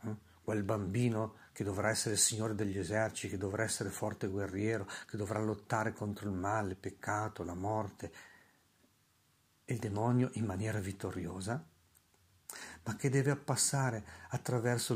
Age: 50-69